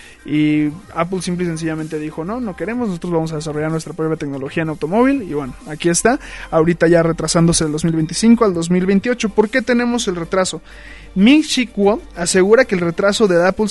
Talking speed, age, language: 185 wpm, 20-39, Spanish